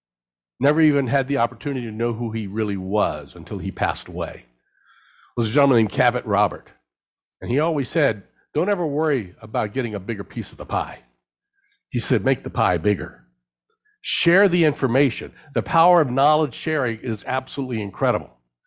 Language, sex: English, male